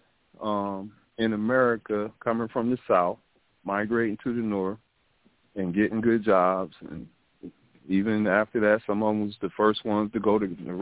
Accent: American